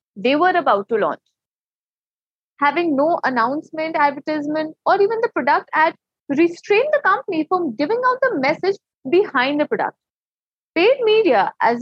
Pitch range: 280-405 Hz